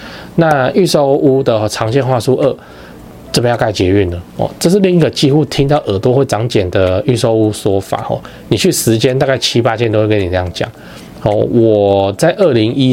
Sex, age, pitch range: male, 20-39, 105-140 Hz